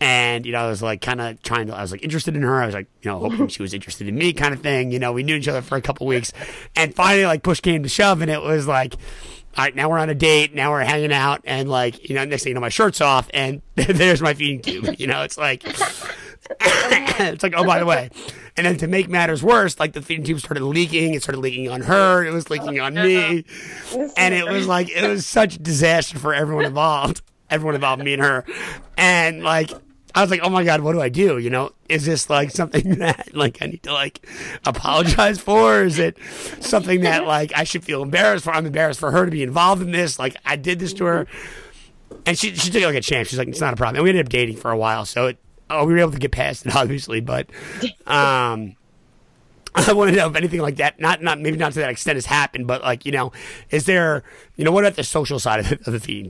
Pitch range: 130-175 Hz